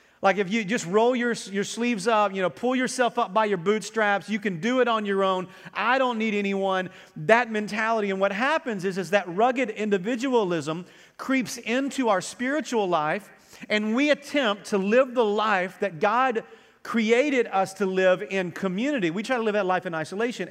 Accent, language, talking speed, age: American, English, 195 wpm, 40-59